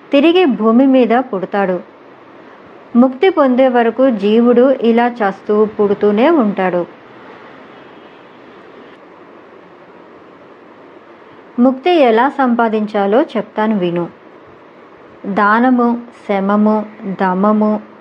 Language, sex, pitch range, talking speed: Telugu, male, 210-265 Hz, 65 wpm